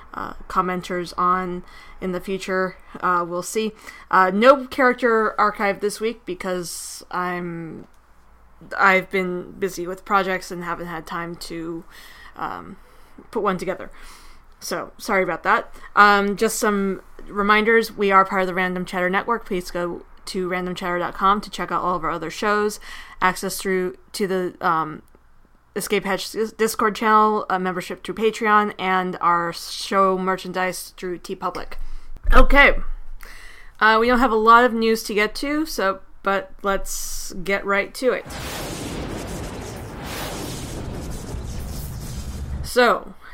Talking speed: 140 wpm